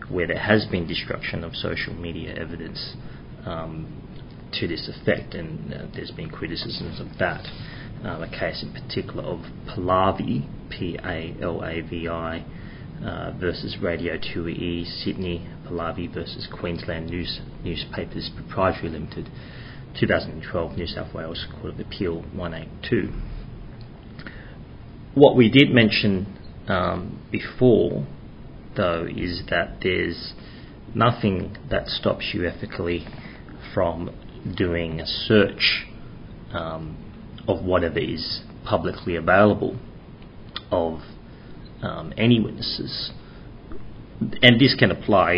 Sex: male